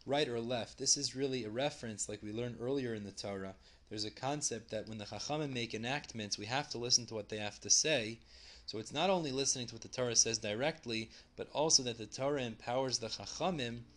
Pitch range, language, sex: 110-135 Hz, English, male